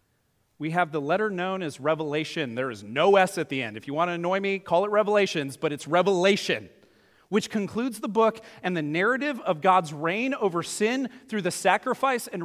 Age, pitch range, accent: 40-59, 145-205 Hz, American